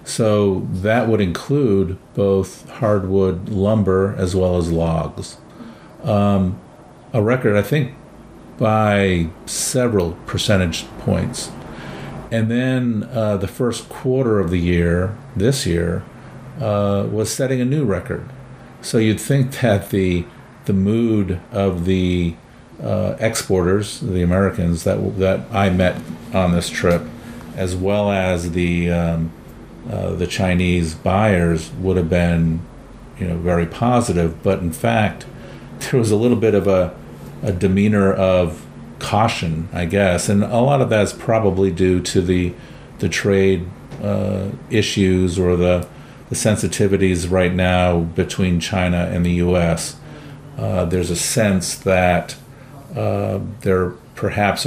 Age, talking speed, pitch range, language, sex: 50-69, 135 wpm, 90-115 Hz, English, male